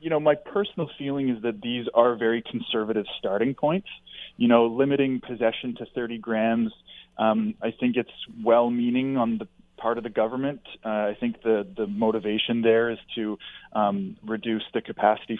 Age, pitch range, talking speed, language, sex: 20-39, 105-120 Hz, 170 wpm, English, male